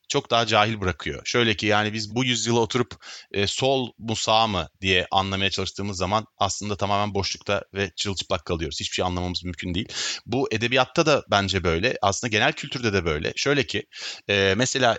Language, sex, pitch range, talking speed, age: Turkish, male, 100-135 Hz, 180 wpm, 30-49